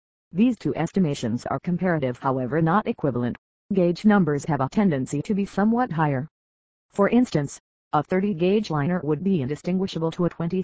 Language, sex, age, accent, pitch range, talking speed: English, female, 40-59, American, 140-185 Hz, 150 wpm